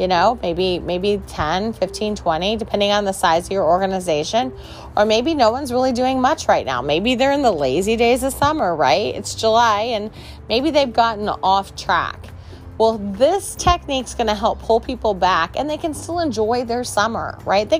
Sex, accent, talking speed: female, American, 190 wpm